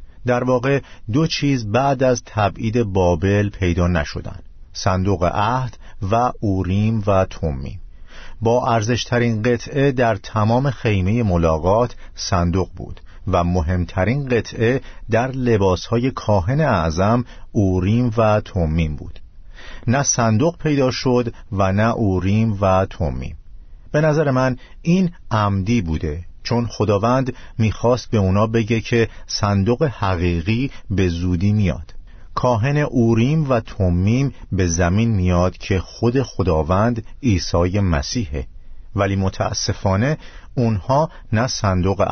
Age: 50-69